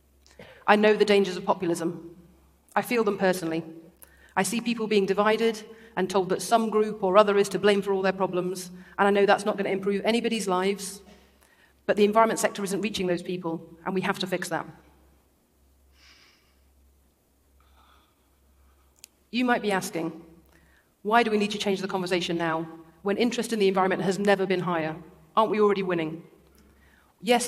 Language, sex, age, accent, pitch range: Chinese, female, 40-59, British, 165-205 Hz